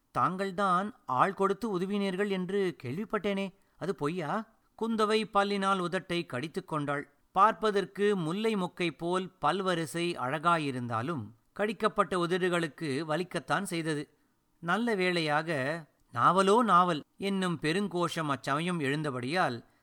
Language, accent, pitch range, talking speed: Tamil, native, 150-195 Hz, 90 wpm